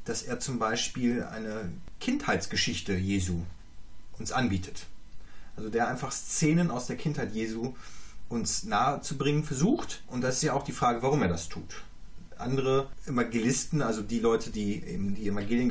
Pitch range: 100-140 Hz